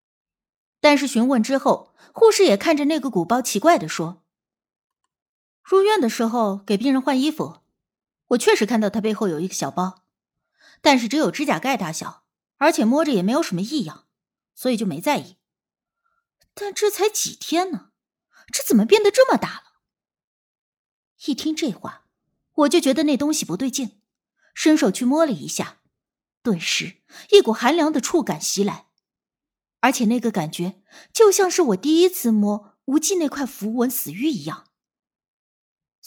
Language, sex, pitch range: Chinese, female, 205-310 Hz